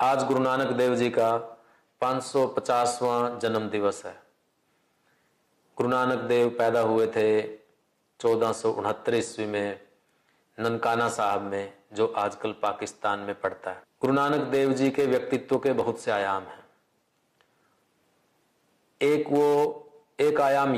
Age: 50-69